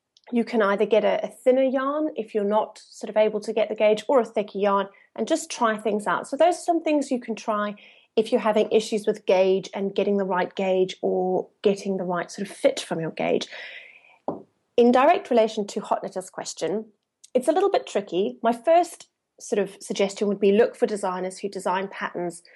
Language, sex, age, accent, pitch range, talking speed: English, female, 30-49, British, 195-240 Hz, 210 wpm